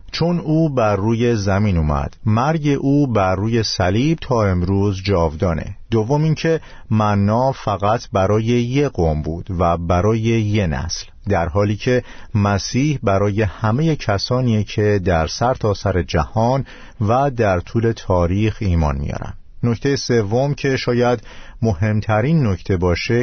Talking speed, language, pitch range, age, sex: 130 wpm, Persian, 90-120 Hz, 50-69, male